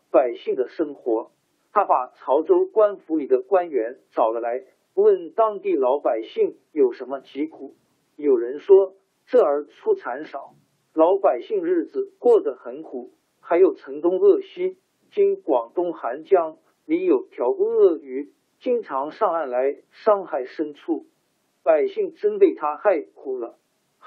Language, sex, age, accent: Chinese, male, 50-69, native